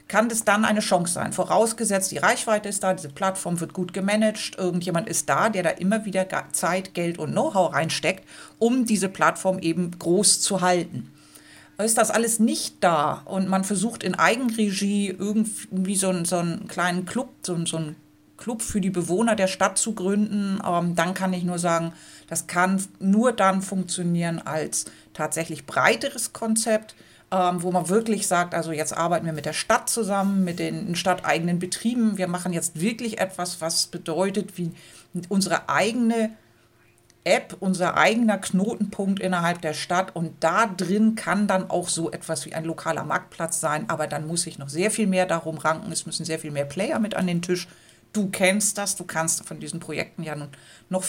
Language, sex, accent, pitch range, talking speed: German, female, German, 170-205 Hz, 180 wpm